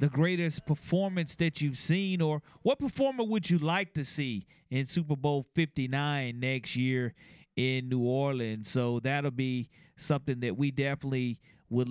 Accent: American